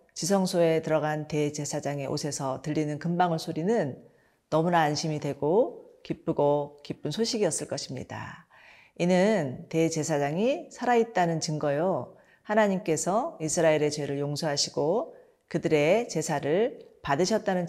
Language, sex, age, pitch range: Korean, female, 40-59, 150-185 Hz